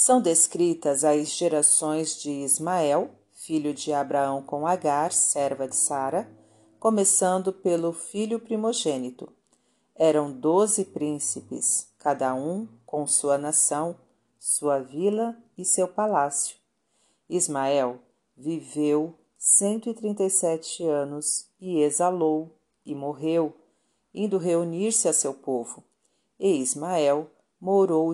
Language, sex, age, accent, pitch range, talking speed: Portuguese, female, 40-59, Brazilian, 145-180 Hz, 100 wpm